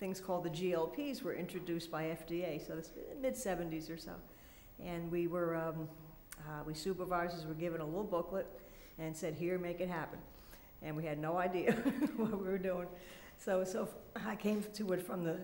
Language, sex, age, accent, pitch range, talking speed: English, female, 50-69, American, 155-195 Hz, 185 wpm